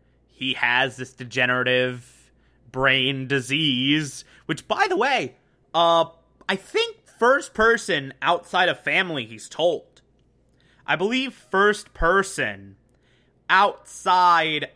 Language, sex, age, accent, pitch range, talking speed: English, male, 20-39, American, 130-175 Hz, 100 wpm